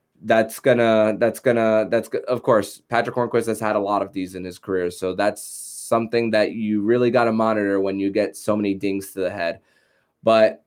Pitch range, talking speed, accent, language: 100-115 Hz, 210 wpm, American, English